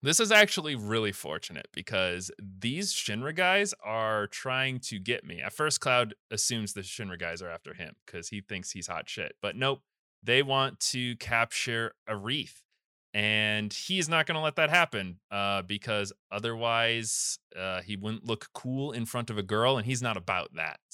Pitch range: 95-120 Hz